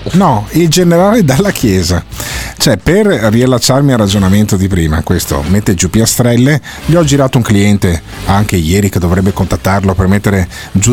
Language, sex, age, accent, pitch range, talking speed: Italian, male, 40-59, native, 95-130 Hz, 160 wpm